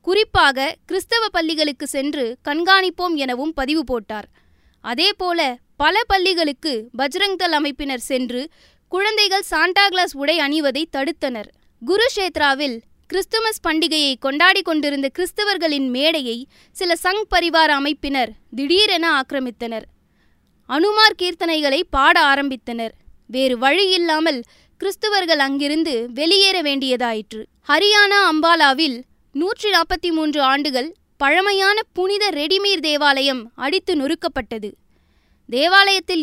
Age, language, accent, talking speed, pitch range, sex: 20-39, Tamil, native, 95 wpm, 275-365 Hz, female